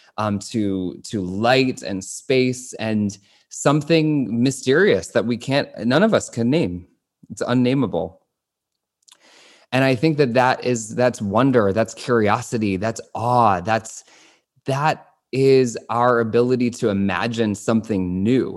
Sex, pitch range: male, 110-130 Hz